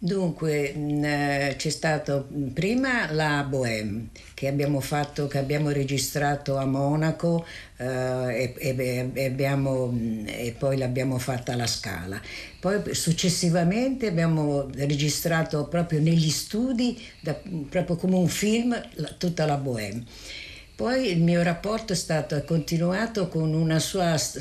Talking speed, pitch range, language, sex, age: 120 wpm, 130-160 Hz, Italian, female, 60-79